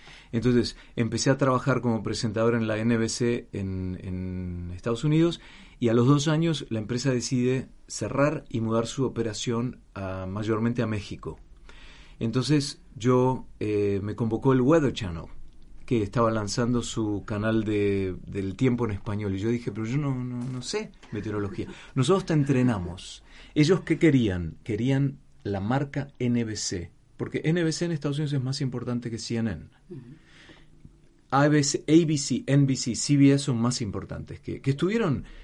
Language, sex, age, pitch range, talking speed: Spanish, male, 30-49, 105-135 Hz, 145 wpm